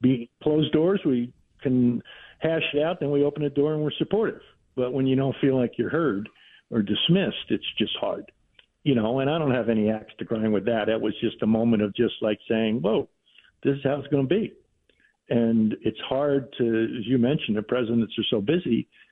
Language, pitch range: English, 110-145 Hz